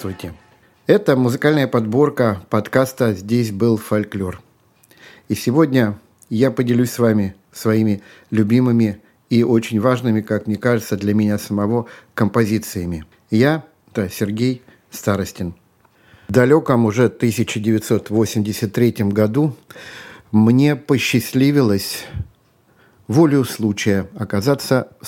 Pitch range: 110-130 Hz